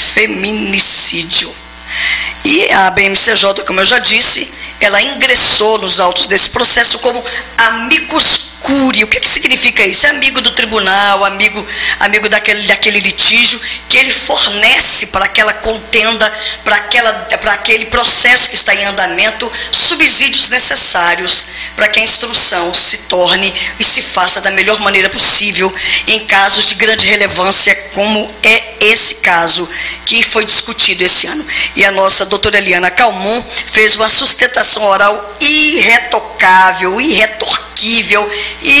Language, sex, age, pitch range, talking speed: Portuguese, female, 20-39, 190-230 Hz, 135 wpm